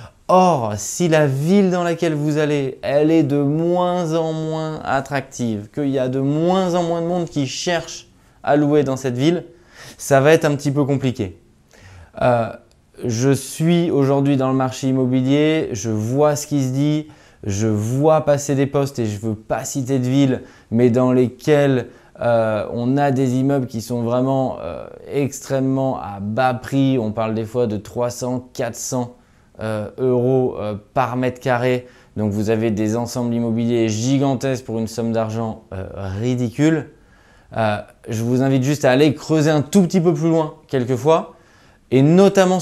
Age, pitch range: 20-39, 120-150 Hz